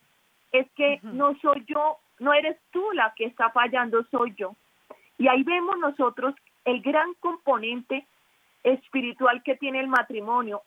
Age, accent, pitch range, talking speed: 30-49, Colombian, 235-285 Hz, 145 wpm